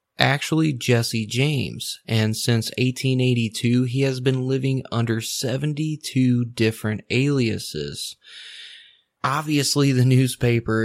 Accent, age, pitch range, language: American, 20-39, 105-125 Hz, English